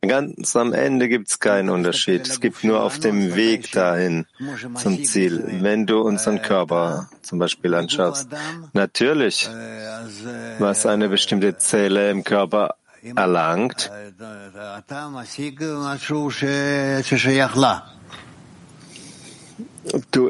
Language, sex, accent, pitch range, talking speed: German, male, German, 95-125 Hz, 95 wpm